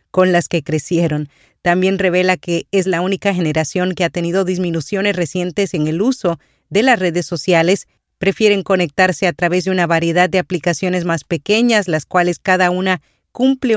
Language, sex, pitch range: Spanish, female, 165-190 Hz